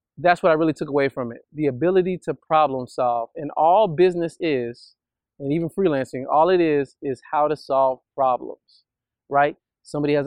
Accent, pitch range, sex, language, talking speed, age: American, 135-165 Hz, male, English, 180 wpm, 30-49